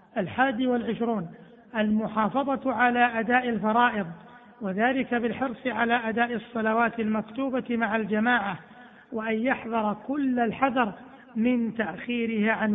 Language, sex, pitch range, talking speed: Arabic, male, 220-245 Hz, 100 wpm